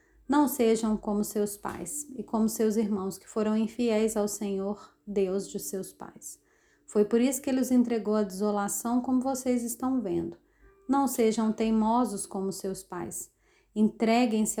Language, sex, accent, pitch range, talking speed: Portuguese, female, Brazilian, 200-250 Hz, 155 wpm